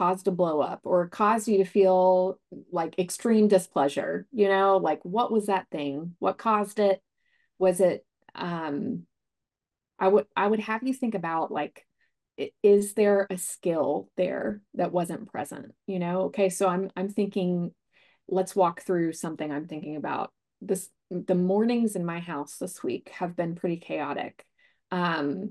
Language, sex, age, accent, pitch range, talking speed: English, female, 30-49, American, 180-235 Hz, 160 wpm